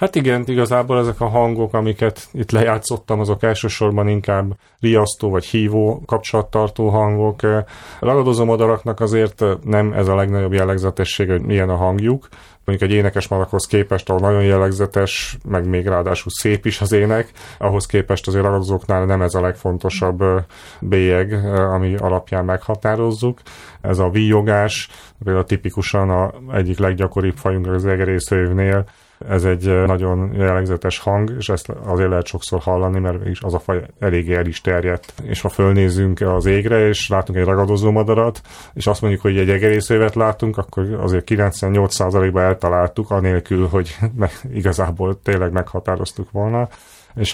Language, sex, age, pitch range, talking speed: Hungarian, male, 30-49, 90-105 Hz, 145 wpm